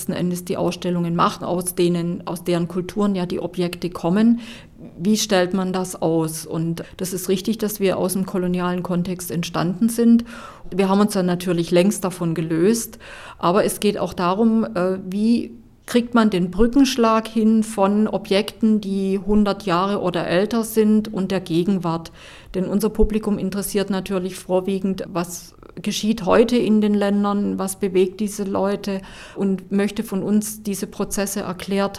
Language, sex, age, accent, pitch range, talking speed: German, female, 50-69, German, 180-205 Hz, 160 wpm